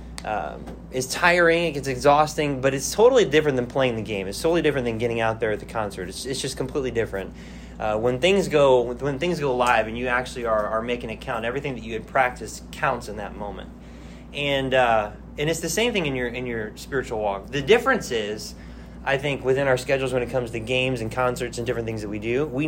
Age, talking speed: 20-39, 235 wpm